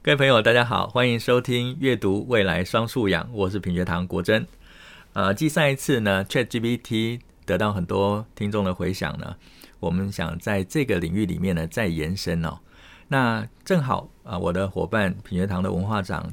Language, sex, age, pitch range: Chinese, male, 50-69, 90-120 Hz